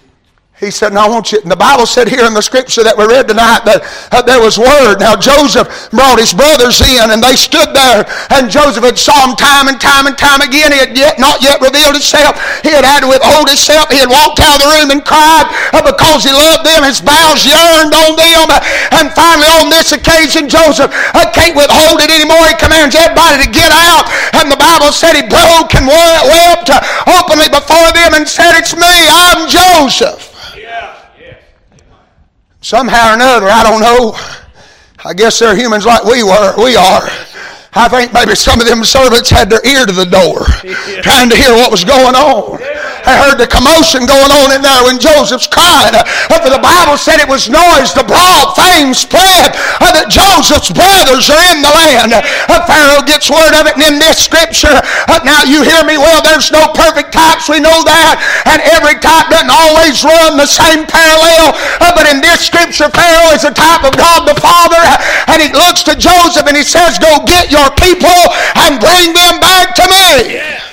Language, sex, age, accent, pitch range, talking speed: English, male, 50-69, American, 270-325 Hz, 195 wpm